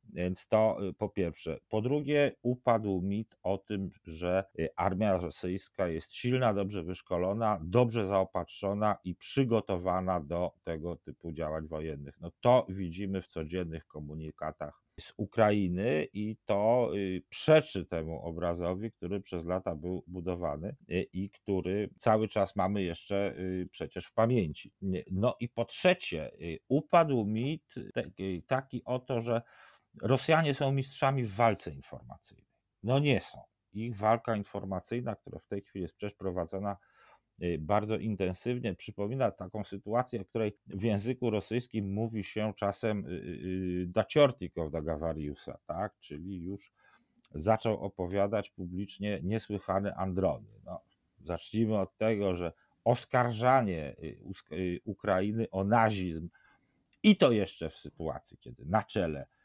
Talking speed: 120 wpm